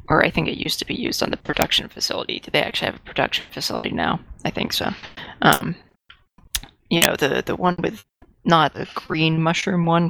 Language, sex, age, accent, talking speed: English, female, 20-39, American, 210 wpm